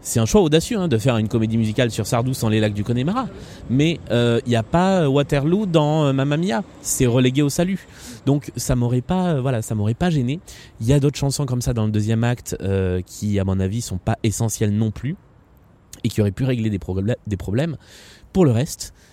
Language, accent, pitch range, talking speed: French, French, 105-140 Hz, 230 wpm